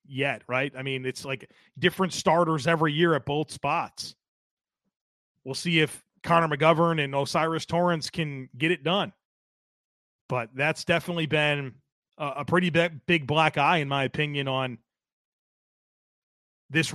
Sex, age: male, 30-49